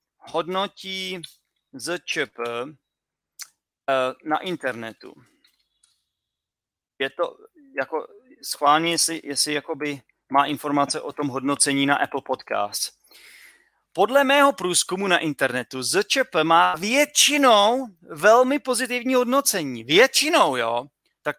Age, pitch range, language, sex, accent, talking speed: 30-49, 135-200 Hz, Czech, male, native, 95 wpm